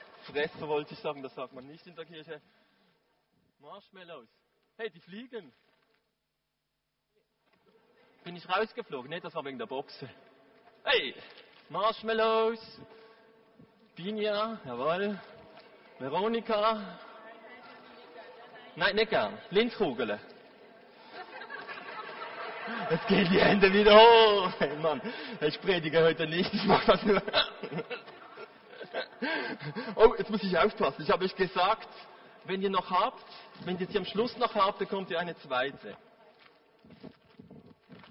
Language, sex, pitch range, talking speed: German, male, 195-225 Hz, 115 wpm